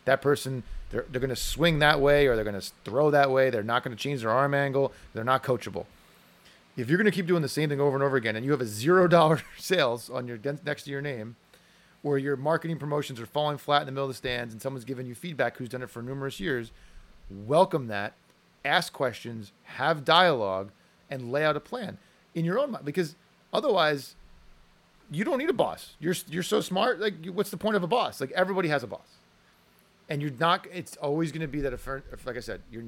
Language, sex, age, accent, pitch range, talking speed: English, male, 30-49, American, 125-155 Hz, 235 wpm